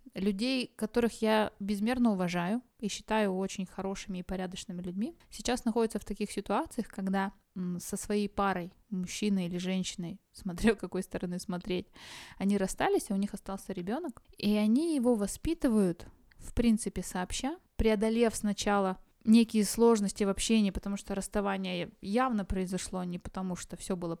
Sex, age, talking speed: female, 20-39, 145 wpm